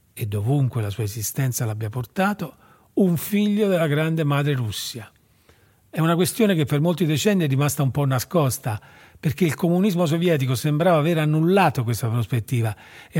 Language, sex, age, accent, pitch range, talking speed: Italian, male, 40-59, native, 115-150 Hz, 160 wpm